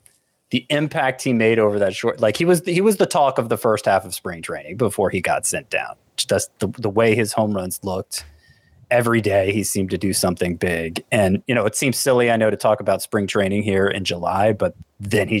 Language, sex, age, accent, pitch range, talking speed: English, male, 30-49, American, 100-120 Hz, 240 wpm